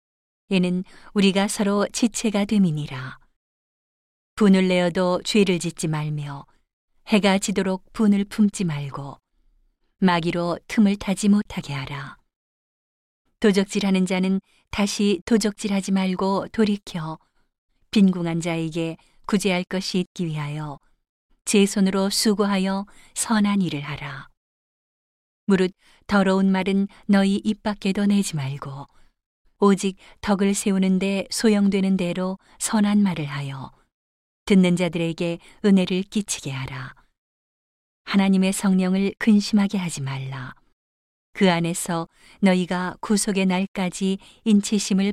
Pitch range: 170-200 Hz